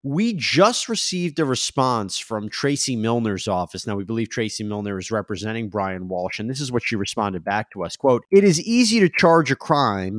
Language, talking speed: English, 205 wpm